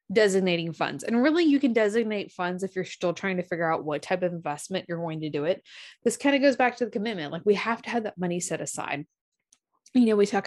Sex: female